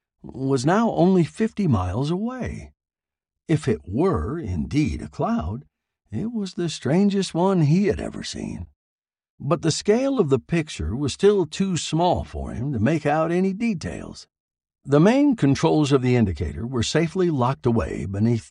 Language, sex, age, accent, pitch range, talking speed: English, male, 60-79, American, 115-175 Hz, 160 wpm